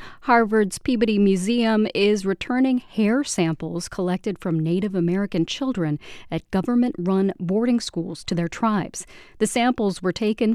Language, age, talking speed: English, 40-59, 130 wpm